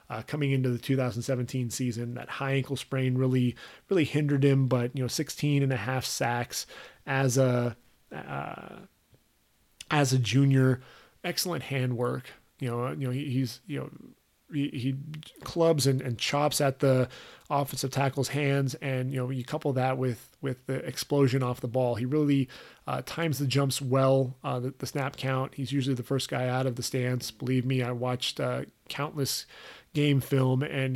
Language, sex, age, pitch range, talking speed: English, male, 30-49, 125-140 Hz, 180 wpm